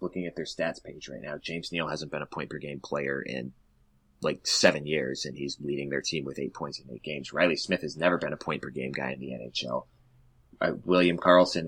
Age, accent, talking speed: 30-49, American, 220 wpm